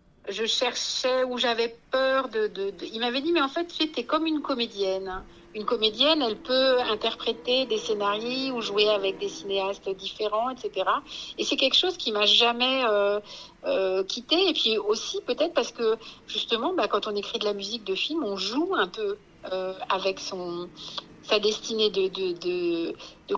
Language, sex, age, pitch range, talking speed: French, female, 60-79, 195-285 Hz, 185 wpm